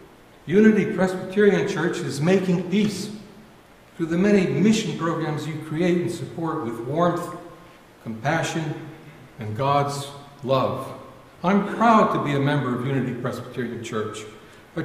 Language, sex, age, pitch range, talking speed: English, male, 60-79, 140-185 Hz, 130 wpm